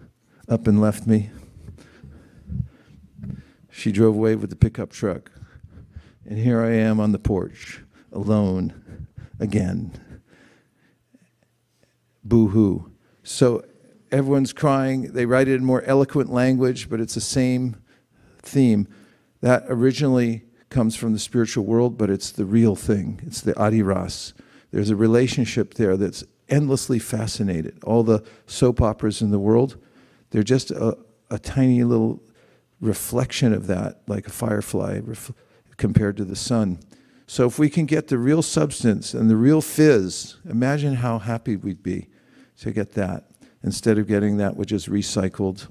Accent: American